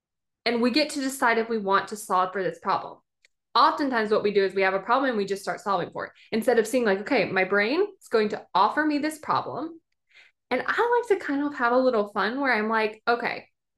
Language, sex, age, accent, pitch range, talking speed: English, female, 20-39, American, 205-280 Hz, 250 wpm